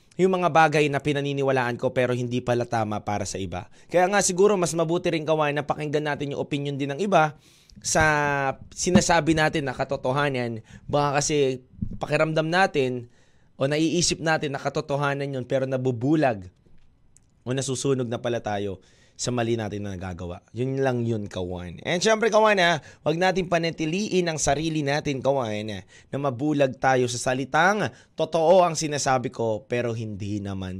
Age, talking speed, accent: 20-39, 160 wpm, native